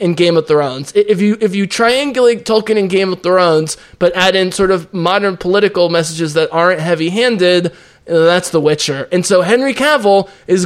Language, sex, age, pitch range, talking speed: English, male, 20-39, 165-210 Hz, 185 wpm